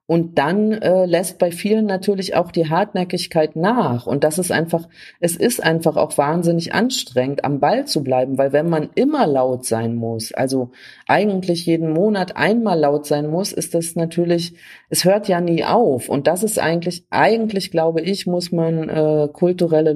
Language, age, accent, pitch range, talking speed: German, 40-59, German, 140-175 Hz, 175 wpm